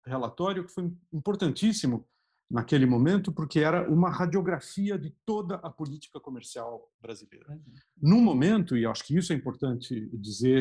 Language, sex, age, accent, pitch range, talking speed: Portuguese, male, 50-69, Brazilian, 120-185 Hz, 140 wpm